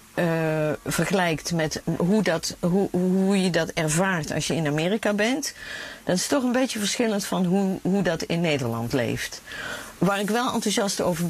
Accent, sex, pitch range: Dutch, female, 170-220 Hz